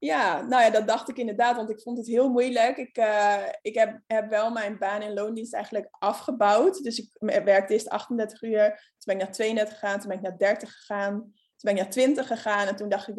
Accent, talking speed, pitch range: Dutch, 235 wpm, 200-230 Hz